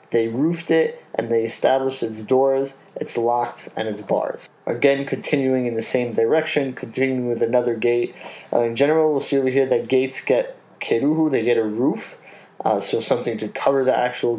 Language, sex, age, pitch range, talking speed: English, male, 20-39, 120-135 Hz, 190 wpm